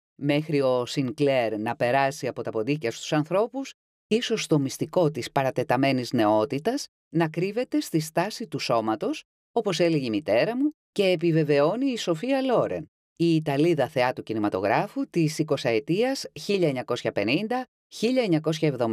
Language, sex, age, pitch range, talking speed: Greek, female, 30-49, 125-185 Hz, 120 wpm